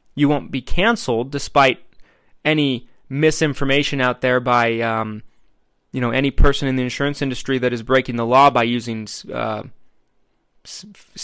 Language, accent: English, American